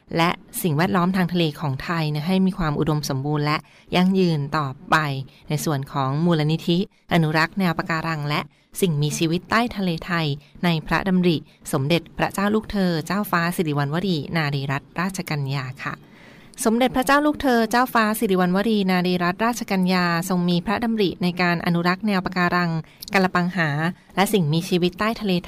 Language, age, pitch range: Thai, 20-39, 160-190 Hz